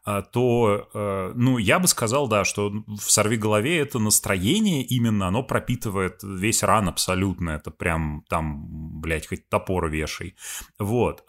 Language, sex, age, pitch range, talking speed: Russian, male, 30-49, 90-120 Hz, 140 wpm